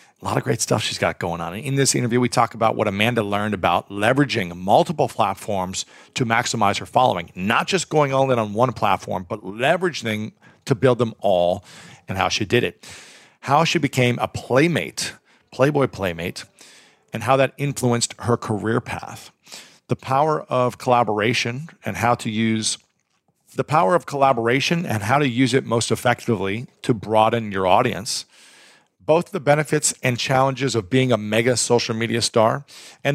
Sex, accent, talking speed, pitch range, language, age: male, American, 170 wpm, 110-135 Hz, English, 40-59